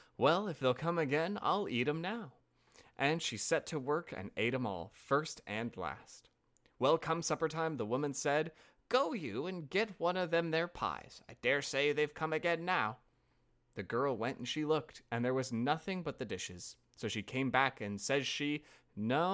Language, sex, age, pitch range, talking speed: English, male, 20-39, 125-185 Hz, 200 wpm